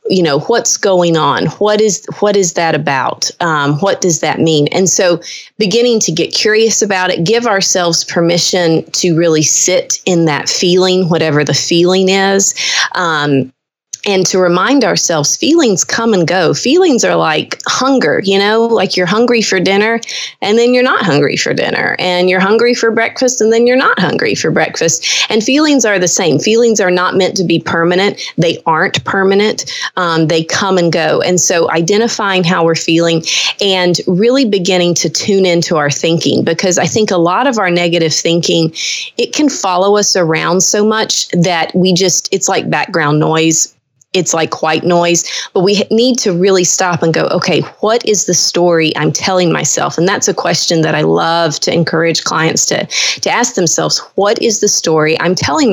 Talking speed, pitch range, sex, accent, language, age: 185 wpm, 165-205 Hz, female, American, English, 30-49